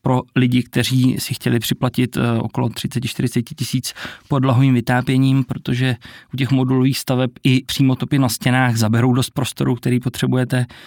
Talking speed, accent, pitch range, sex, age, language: 145 wpm, native, 120-130 Hz, male, 20-39, Czech